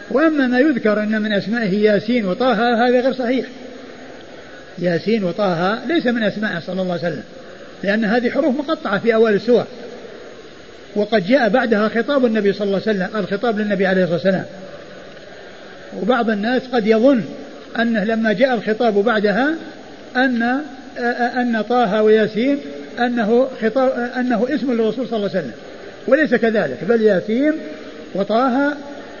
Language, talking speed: Arabic, 140 wpm